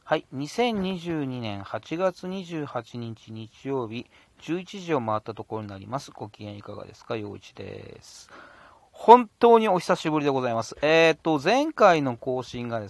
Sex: male